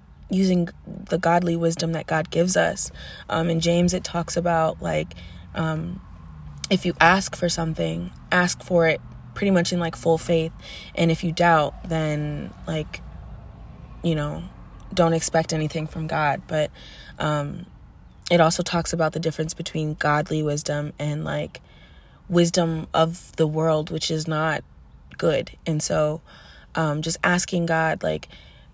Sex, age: female, 20-39